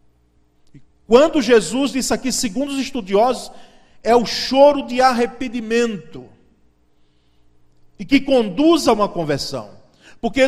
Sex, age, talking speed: male, 40-59, 110 wpm